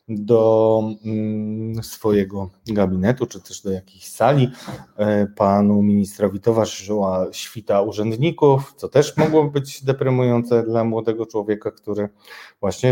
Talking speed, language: 105 wpm, Polish